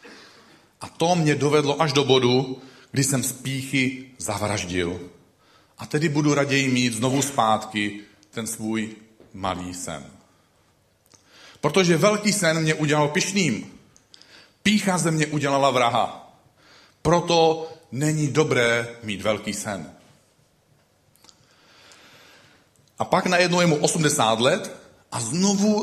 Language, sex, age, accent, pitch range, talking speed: Czech, male, 40-59, native, 115-160 Hz, 110 wpm